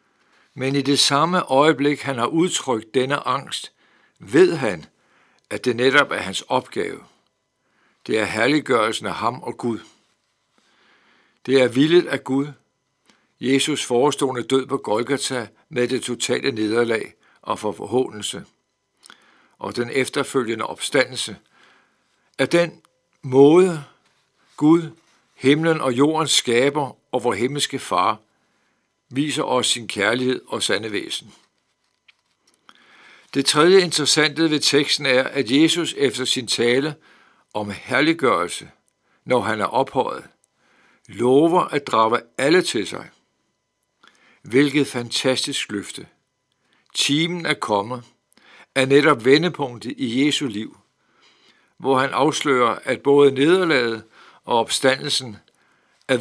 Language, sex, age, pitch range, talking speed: Danish, male, 60-79, 125-145 Hz, 115 wpm